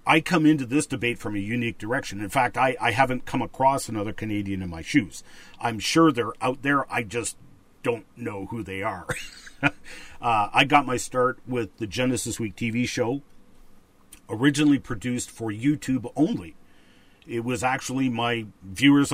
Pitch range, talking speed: 105-135 Hz, 170 wpm